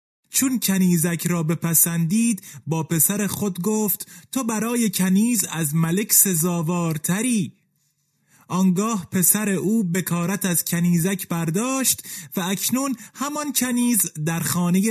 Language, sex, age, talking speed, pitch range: Persian, male, 30-49, 115 wpm, 170-205 Hz